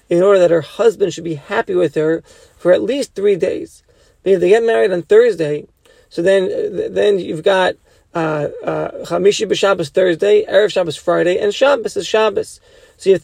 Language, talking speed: English, 180 wpm